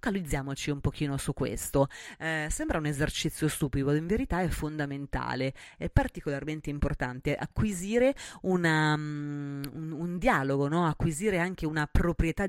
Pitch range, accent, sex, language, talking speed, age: 140-170 Hz, native, female, Italian, 120 wpm, 30-49